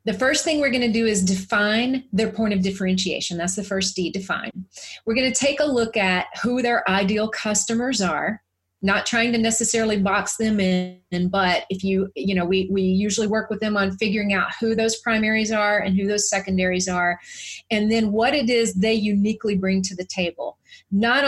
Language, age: English, 30-49